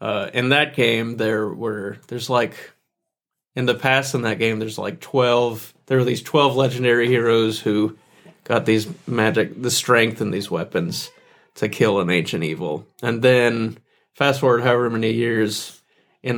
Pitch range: 110-125 Hz